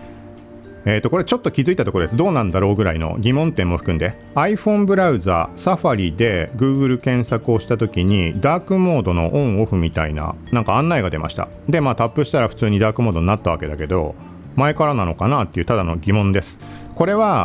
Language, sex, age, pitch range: Japanese, male, 40-59, 90-145 Hz